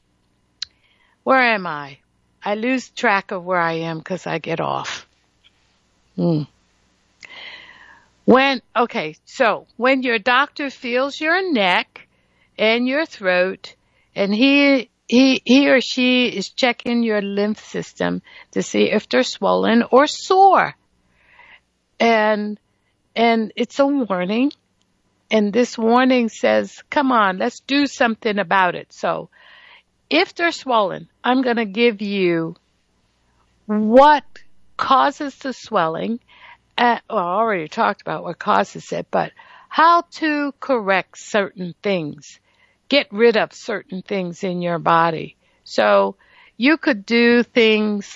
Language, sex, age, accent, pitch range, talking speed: English, female, 60-79, American, 185-265 Hz, 125 wpm